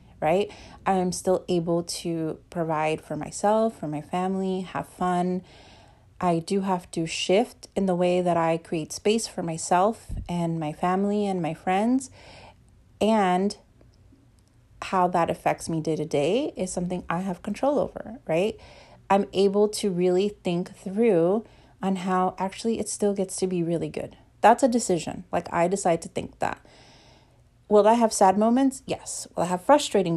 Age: 30-49